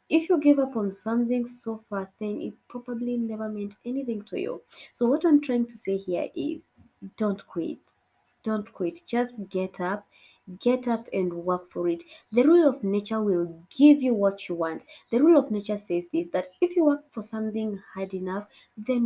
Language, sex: English, female